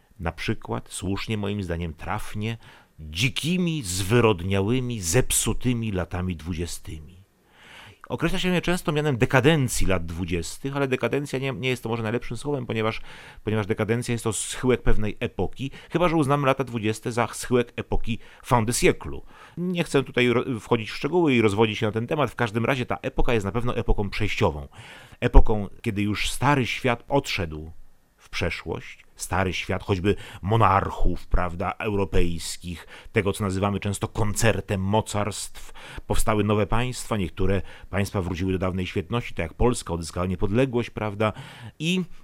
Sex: male